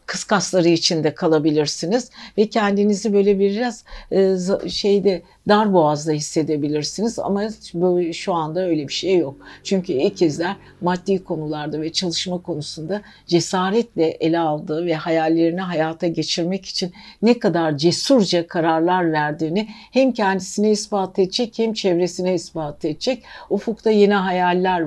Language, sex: Turkish, female